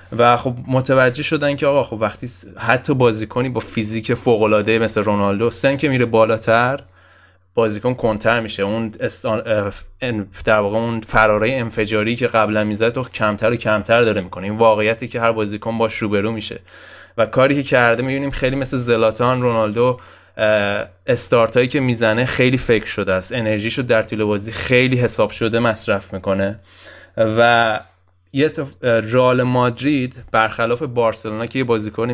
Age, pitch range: 20-39, 105-120 Hz